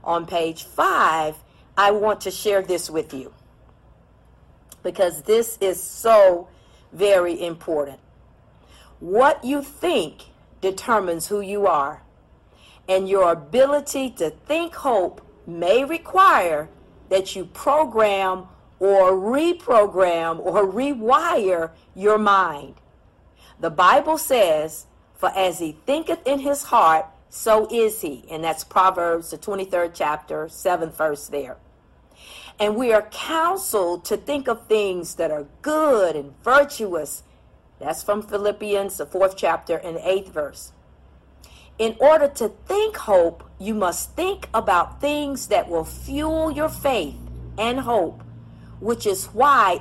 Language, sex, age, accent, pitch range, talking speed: English, female, 50-69, American, 165-245 Hz, 125 wpm